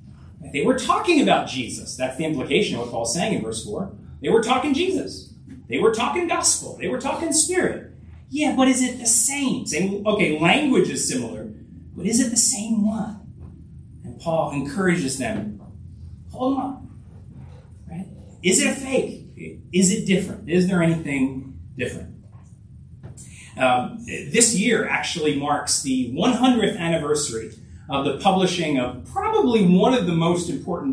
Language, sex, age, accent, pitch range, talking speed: English, male, 30-49, American, 140-205 Hz, 155 wpm